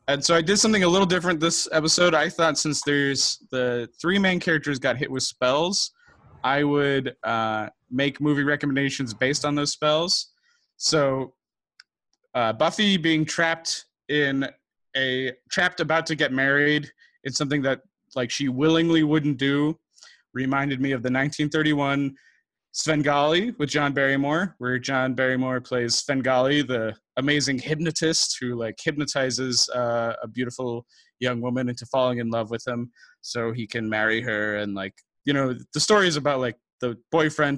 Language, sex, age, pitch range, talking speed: English, male, 20-39, 125-155 Hz, 160 wpm